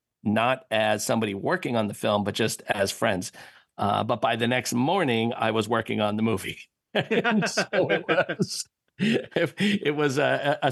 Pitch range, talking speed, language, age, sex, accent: 100-115 Hz, 175 wpm, English, 50-69, male, American